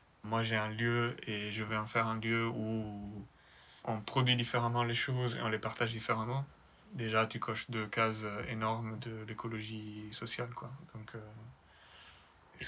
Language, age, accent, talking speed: French, 20-39, French, 165 wpm